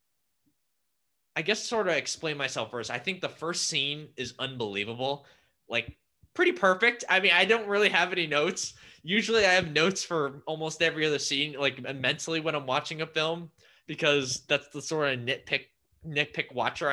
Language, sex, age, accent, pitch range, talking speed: English, male, 20-39, American, 110-150 Hz, 175 wpm